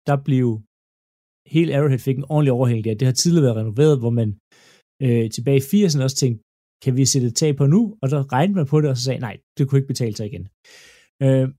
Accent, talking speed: native, 225 wpm